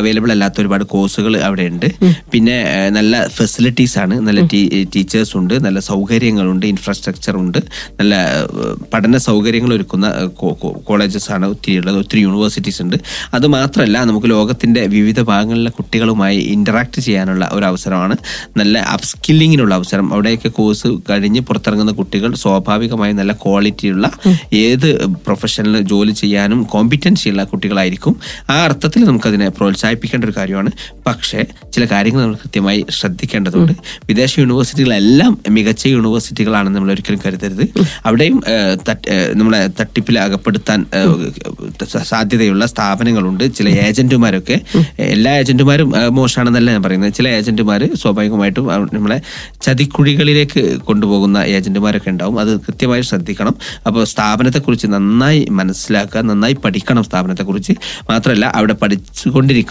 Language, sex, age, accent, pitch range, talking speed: Malayalam, male, 20-39, native, 100-125 Hz, 105 wpm